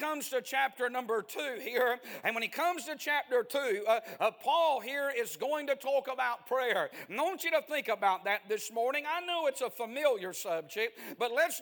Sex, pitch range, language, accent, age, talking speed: male, 230-280 Hz, English, American, 50-69, 195 wpm